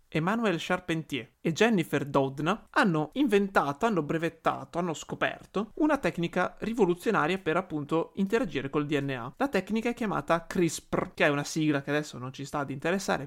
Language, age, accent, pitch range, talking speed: Italian, 30-49, native, 150-215 Hz, 160 wpm